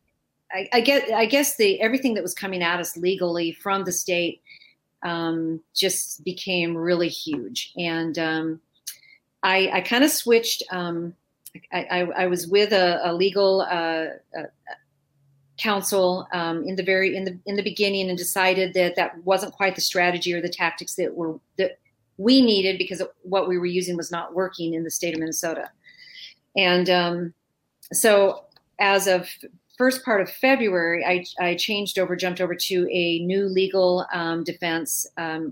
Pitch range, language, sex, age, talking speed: 170-200 Hz, English, female, 40-59, 165 wpm